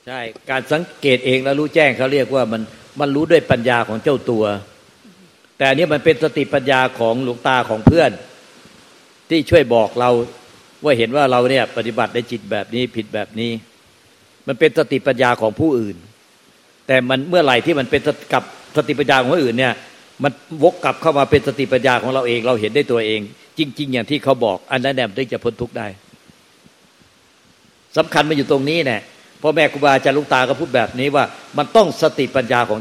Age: 60-79